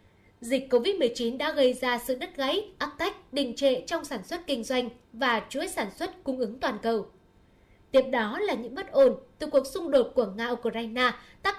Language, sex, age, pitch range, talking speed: Vietnamese, female, 10-29, 240-300 Hz, 195 wpm